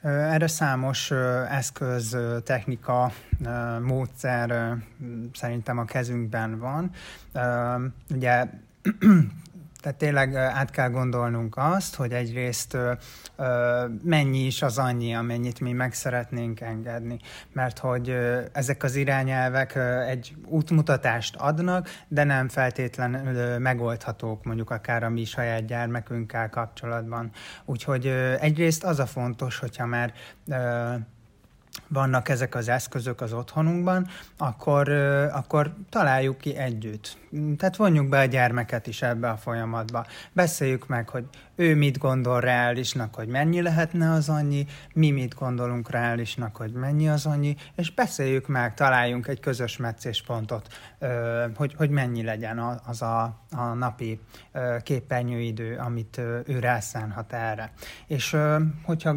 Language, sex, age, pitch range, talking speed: Hungarian, male, 30-49, 120-140 Hz, 115 wpm